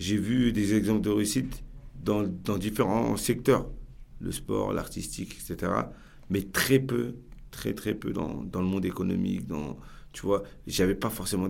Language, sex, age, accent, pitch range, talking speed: French, male, 50-69, French, 105-135 Hz, 165 wpm